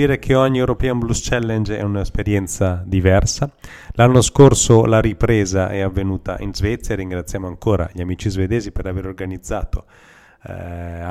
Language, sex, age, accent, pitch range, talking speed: Italian, male, 30-49, native, 95-120 Hz, 135 wpm